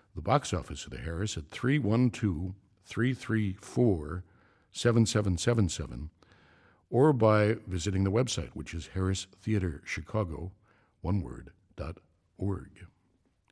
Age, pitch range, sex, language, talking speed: 60-79, 90-120 Hz, male, English, 85 wpm